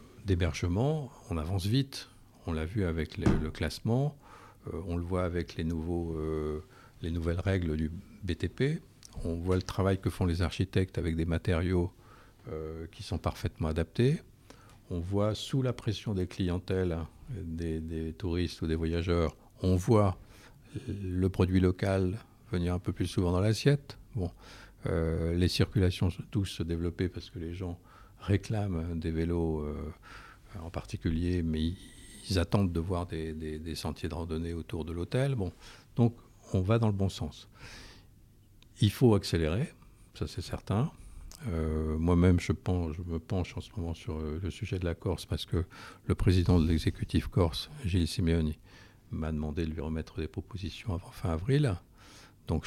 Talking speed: 165 wpm